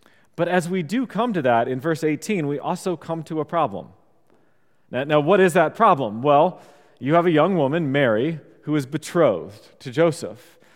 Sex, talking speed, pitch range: male, 185 wpm, 135-165 Hz